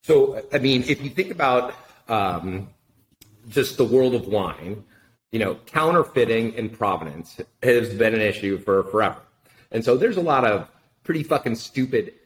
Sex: male